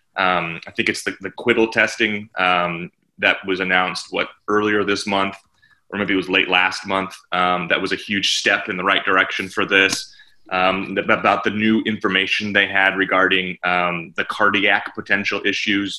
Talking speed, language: 180 wpm, English